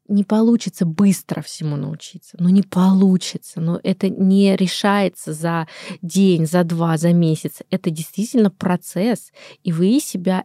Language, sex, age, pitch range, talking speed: Russian, female, 20-39, 170-200 Hz, 150 wpm